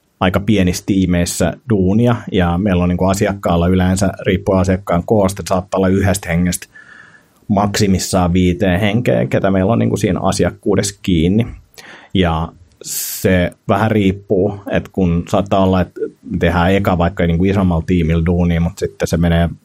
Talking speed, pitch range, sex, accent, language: 155 wpm, 90-100 Hz, male, native, Finnish